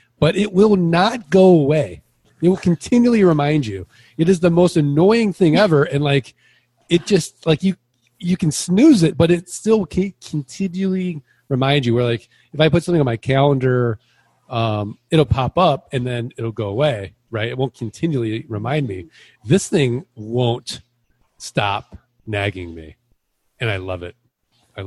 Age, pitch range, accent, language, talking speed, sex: 40-59, 115-160 Hz, American, English, 170 wpm, male